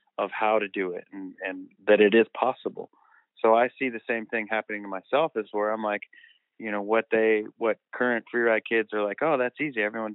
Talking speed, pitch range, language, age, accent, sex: 230 wpm, 95-115 Hz, English, 30-49, American, male